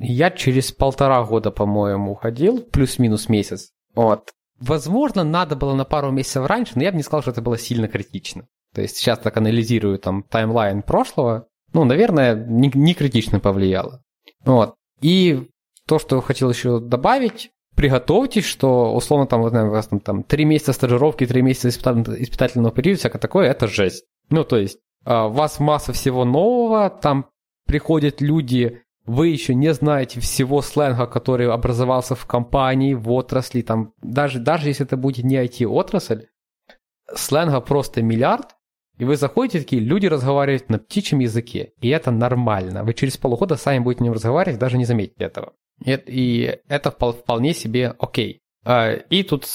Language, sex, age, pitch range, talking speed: Ukrainian, male, 20-39, 120-150 Hz, 160 wpm